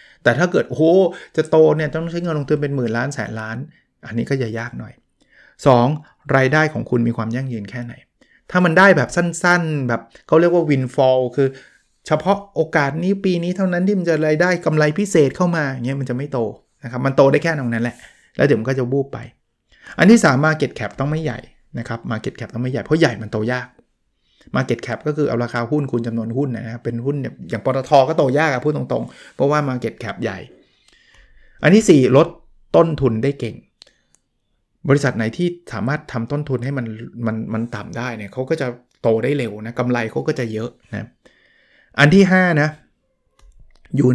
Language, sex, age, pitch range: Thai, male, 20-39, 115-155 Hz